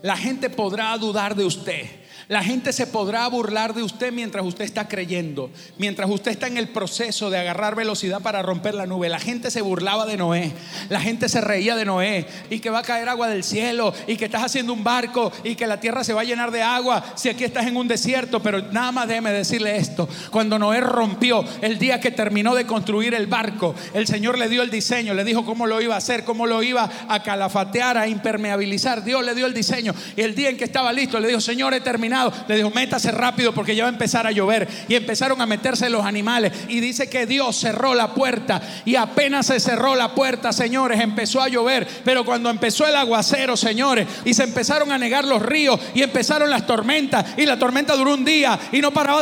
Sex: male